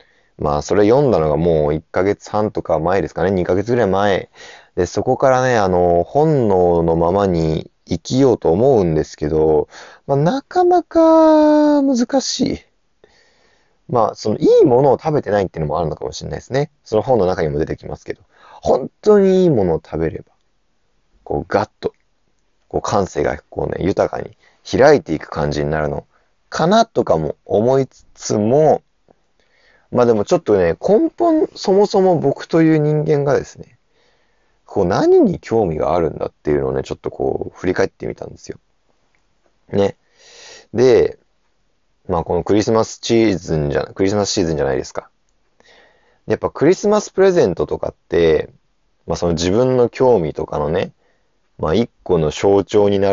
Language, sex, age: Japanese, male, 30-49